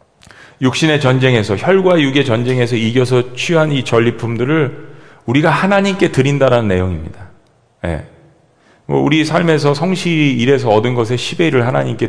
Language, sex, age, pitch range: Korean, male, 40-59, 110-160 Hz